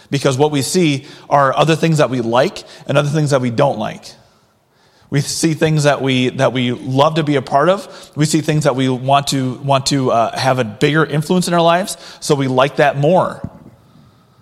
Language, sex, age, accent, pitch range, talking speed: English, male, 30-49, American, 125-160 Hz, 215 wpm